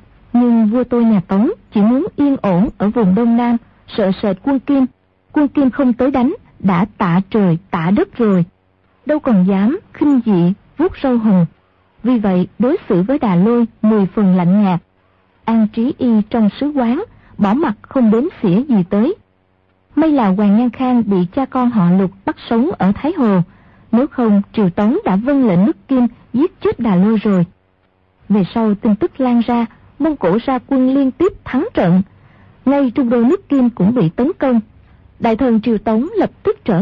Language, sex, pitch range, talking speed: Vietnamese, female, 195-265 Hz, 195 wpm